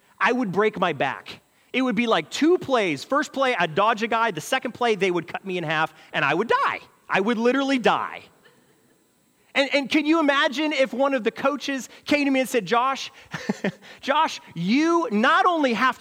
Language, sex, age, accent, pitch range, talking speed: English, male, 30-49, American, 145-235 Hz, 205 wpm